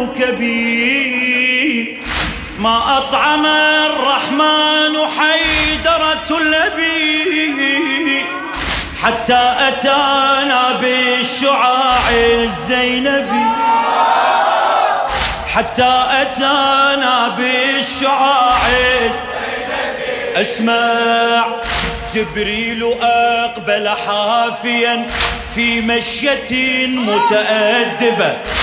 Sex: male